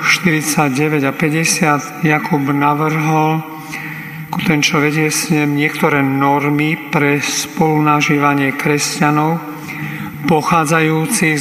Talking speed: 75 wpm